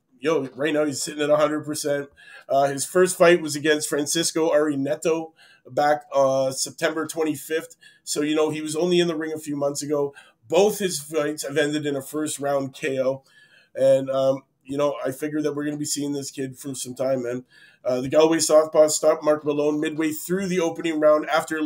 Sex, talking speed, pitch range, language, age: male, 200 wpm, 145-165 Hz, English, 30-49